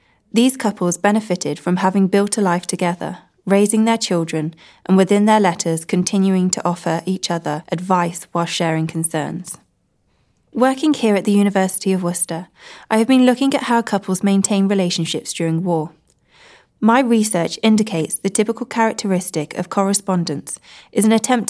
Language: English